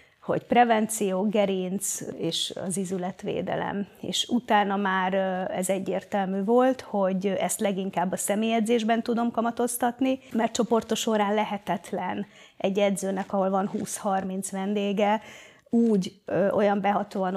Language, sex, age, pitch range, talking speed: Hungarian, female, 30-49, 190-225 Hz, 110 wpm